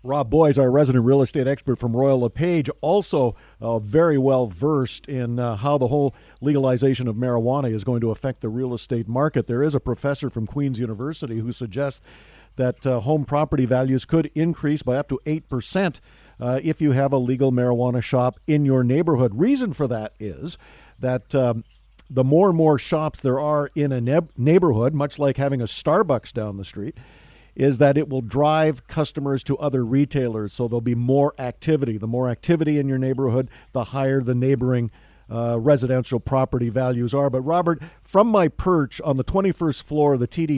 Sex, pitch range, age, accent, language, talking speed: male, 125-150 Hz, 50-69, American, English, 190 wpm